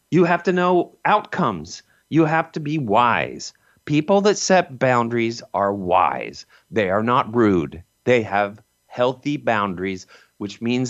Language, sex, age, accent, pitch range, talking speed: English, male, 40-59, American, 110-170 Hz, 145 wpm